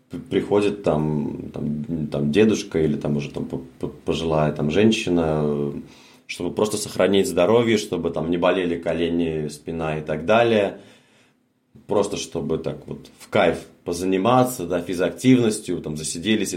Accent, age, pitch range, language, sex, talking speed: native, 30-49, 80-110 Hz, Russian, male, 125 wpm